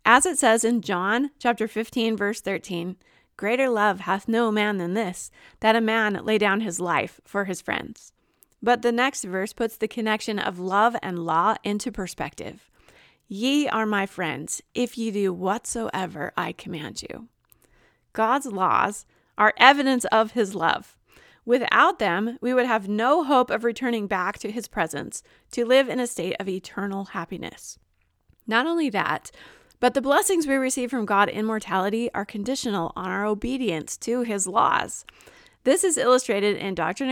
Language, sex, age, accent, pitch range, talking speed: English, female, 30-49, American, 200-245 Hz, 165 wpm